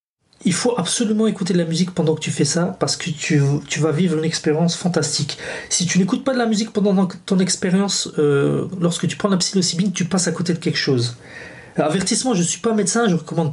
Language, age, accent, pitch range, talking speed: French, 30-49, French, 165-215 Hz, 240 wpm